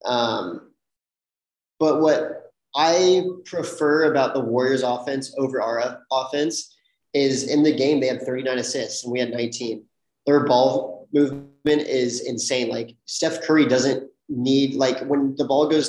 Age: 30-49